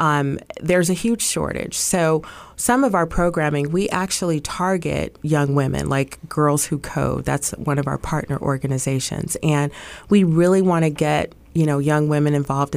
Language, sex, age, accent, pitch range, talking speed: English, female, 30-49, American, 145-175 Hz, 165 wpm